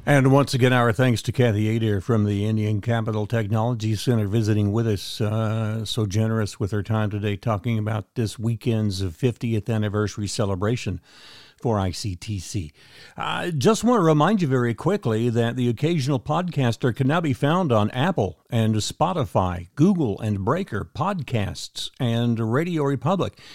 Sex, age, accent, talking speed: male, 50-69, American, 155 wpm